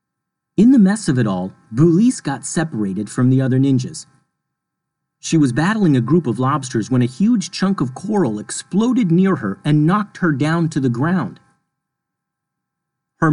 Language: English